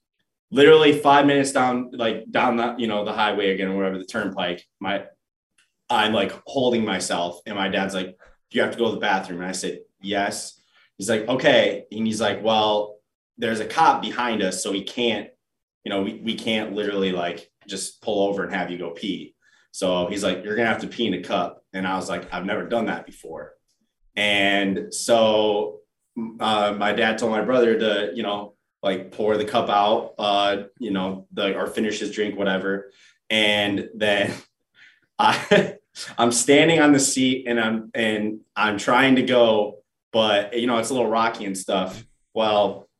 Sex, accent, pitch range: male, American, 100-120 Hz